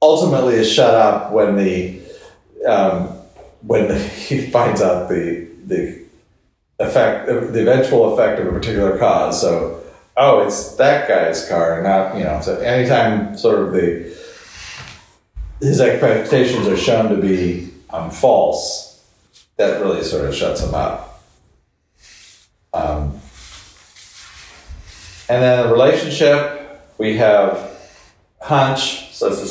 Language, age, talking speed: English, 40-59, 125 wpm